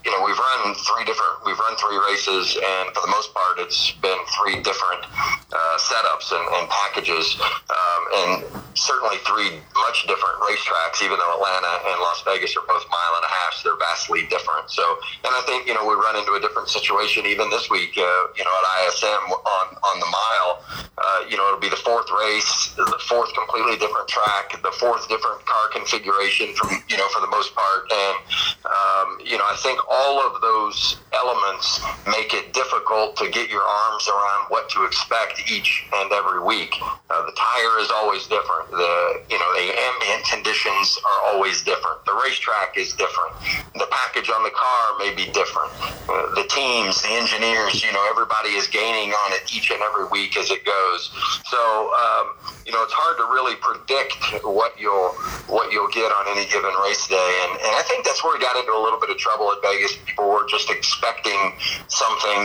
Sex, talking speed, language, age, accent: male, 200 wpm, English, 30-49, American